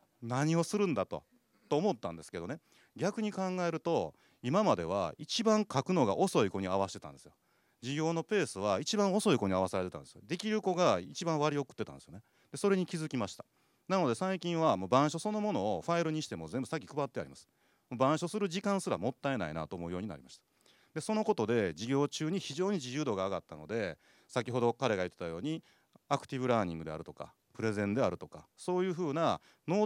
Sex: male